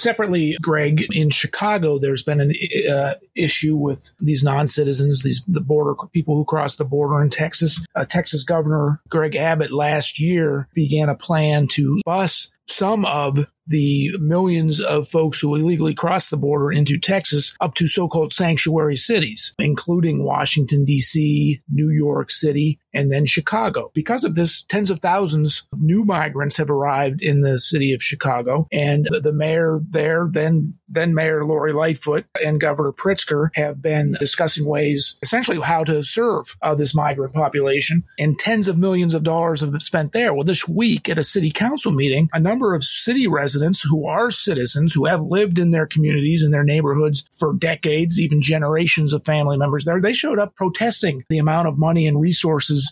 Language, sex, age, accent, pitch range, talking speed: English, male, 40-59, American, 145-170 Hz, 175 wpm